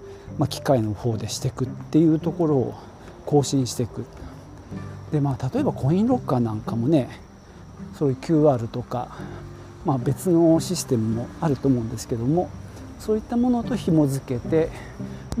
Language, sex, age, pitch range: Japanese, male, 40-59, 105-160 Hz